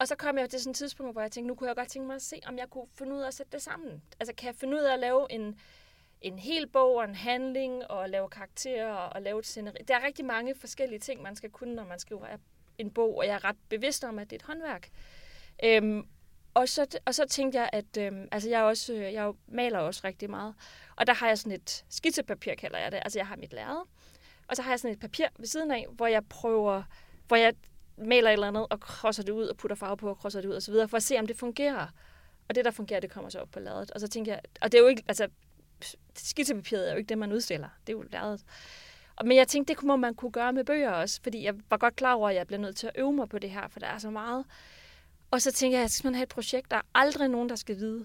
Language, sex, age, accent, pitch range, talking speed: Danish, female, 30-49, native, 210-260 Hz, 280 wpm